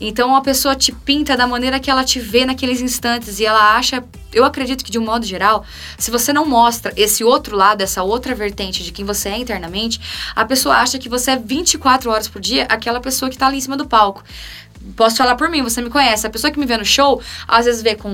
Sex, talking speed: female, 250 wpm